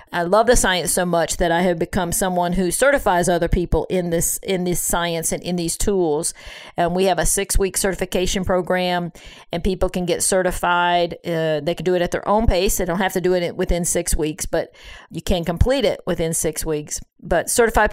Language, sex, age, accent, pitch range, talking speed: English, female, 50-69, American, 175-200 Hz, 220 wpm